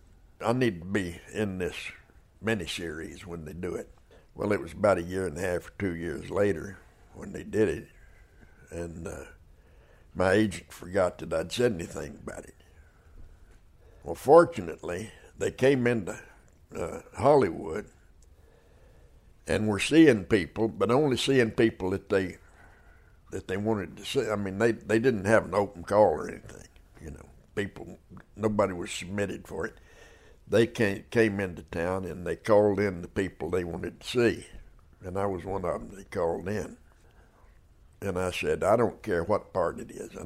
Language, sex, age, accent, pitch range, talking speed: English, male, 60-79, American, 85-105 Hz, 170 wpm